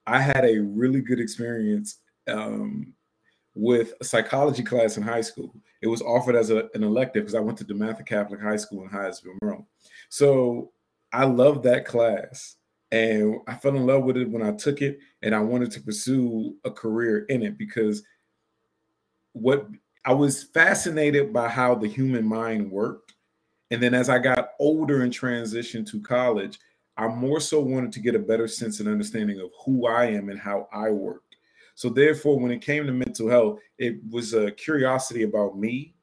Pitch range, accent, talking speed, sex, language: 105-130 Hz, American, 185 wpm, male, English